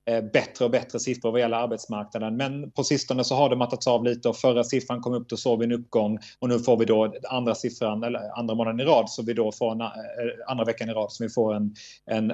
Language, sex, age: English, male, 30-49